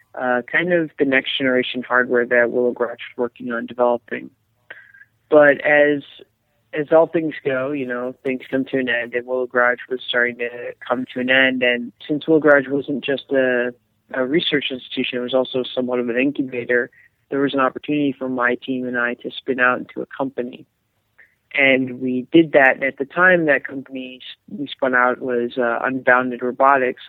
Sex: male